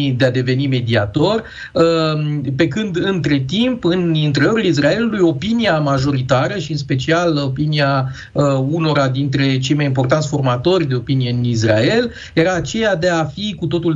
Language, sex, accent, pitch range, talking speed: Romanian, male, native, 135-170 Hz, 150 wpm